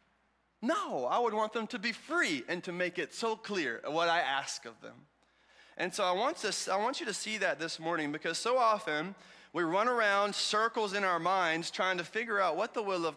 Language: English